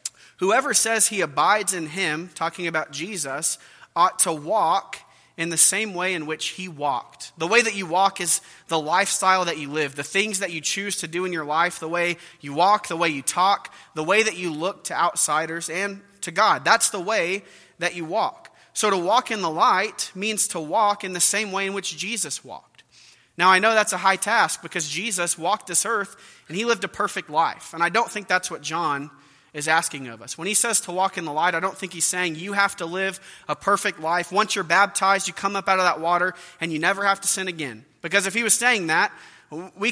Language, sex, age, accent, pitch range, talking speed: English, male, 30-49, American, 170-210 Hz, 235 wpm